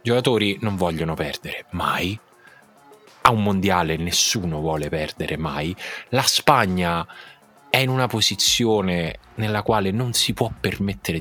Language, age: Italian, 20-39